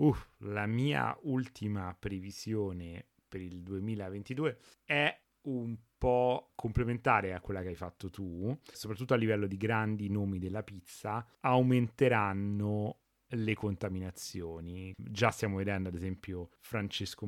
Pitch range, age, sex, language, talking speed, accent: 95-115 Hz, 30-49, male, Italian, 120 wpm, native